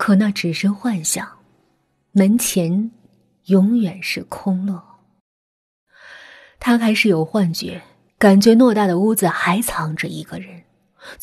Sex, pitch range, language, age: female, 175-235 Hz, Chinese, 20-39